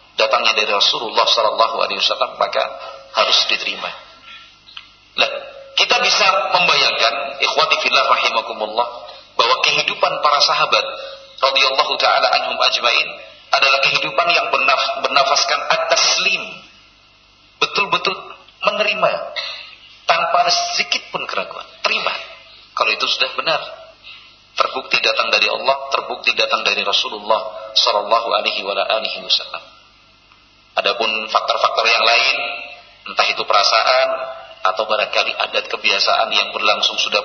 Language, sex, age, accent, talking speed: Indonesian, male, 50-69, native, 100 wpm